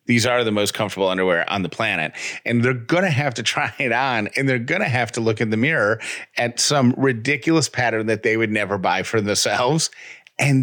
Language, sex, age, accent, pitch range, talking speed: English, male, 40-59, American, 105-135 Hz, 225 wpm